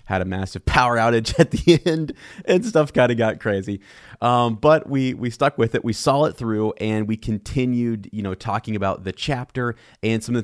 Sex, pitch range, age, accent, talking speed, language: male, 100-120 Hz, 30-49, American, 220 wpm, English